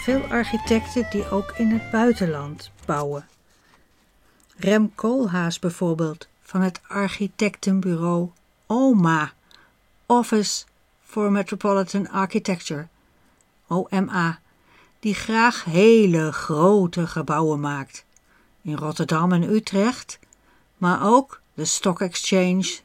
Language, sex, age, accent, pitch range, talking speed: Dutch, female, 60-79, Dutch, 165-215 Hz, 90 wpm